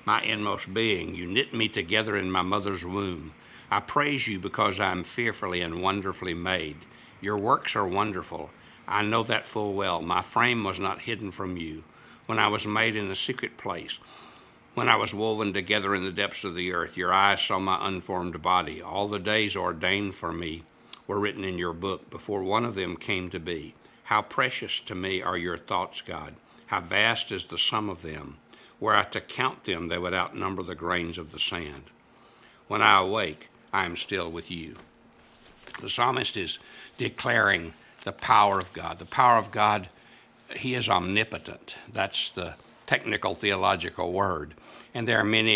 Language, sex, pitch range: English, male, 90-105 Hz